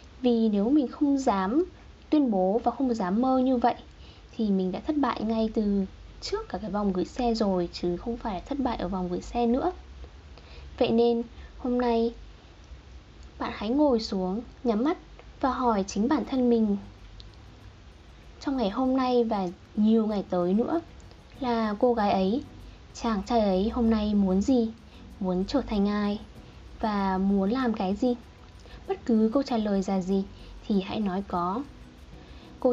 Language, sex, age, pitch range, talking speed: Vietnamese, female, 10-29, 195-255 Hz, 170 wpm